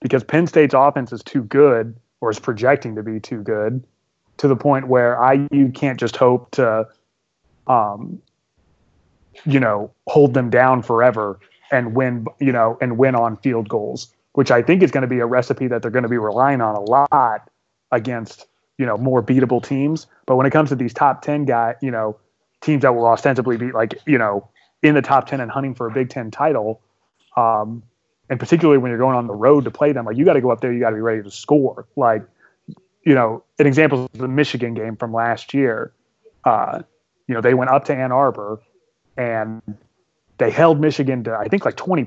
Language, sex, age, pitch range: English, male, 30-49, 120-145 Hz